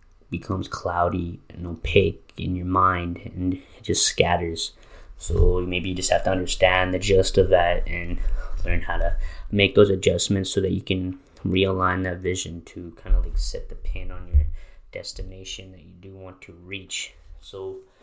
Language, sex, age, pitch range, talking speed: English, male, 20-39, 85-95 Hz, 175 wpm